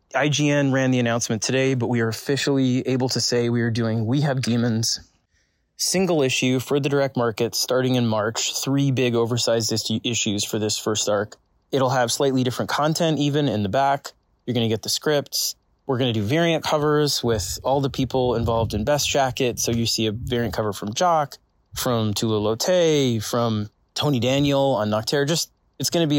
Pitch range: 110-135 Hz